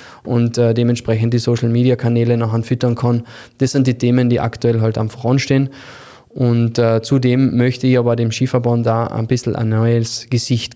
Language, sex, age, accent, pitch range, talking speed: German, male, 20-39, German, 120-135 Hz, 180 wpm